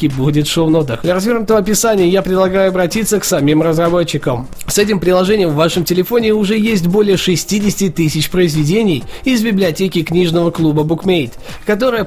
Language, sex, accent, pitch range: Russian, male, native, 160-200 Hz